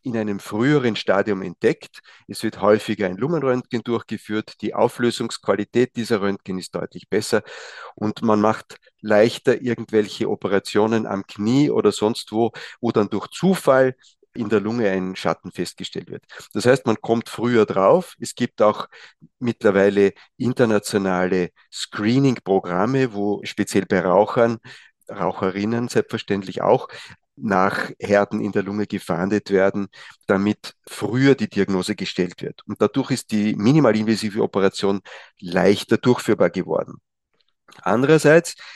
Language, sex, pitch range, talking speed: German, male, 100-120 Hz, 125 wpm